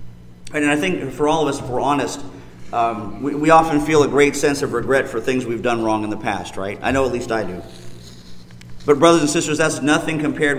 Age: 40-59